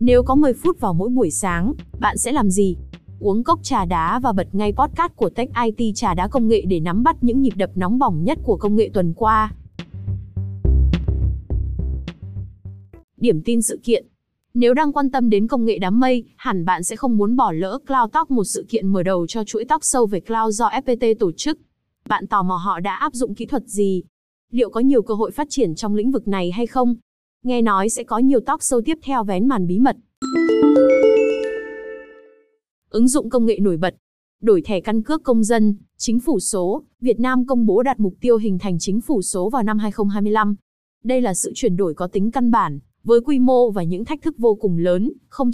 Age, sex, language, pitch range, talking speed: 20-39, female, Vietnamese, 195-260 Hz, 215 wpm